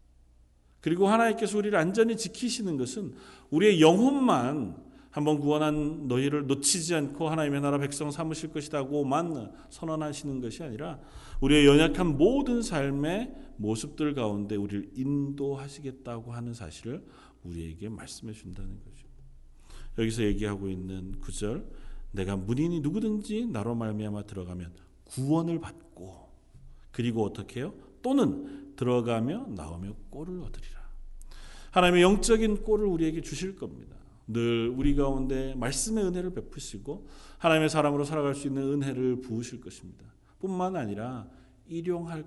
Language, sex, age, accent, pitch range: Korean, male, 40-59, native, 110-150 Hz